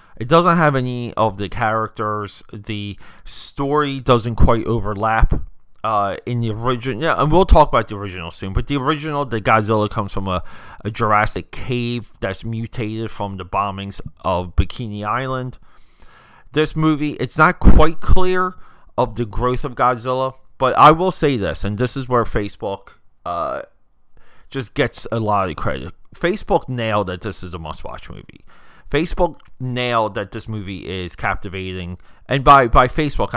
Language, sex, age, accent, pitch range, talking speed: English, male, 30-49, American, 100-130 Hz, 160 wpm